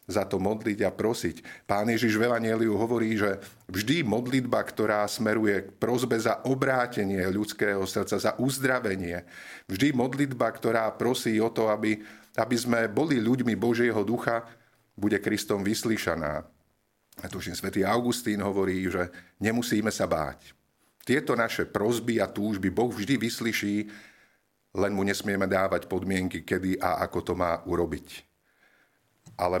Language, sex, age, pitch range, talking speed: Slovak, male, 50-69, 90-115 Hz, 140 wpm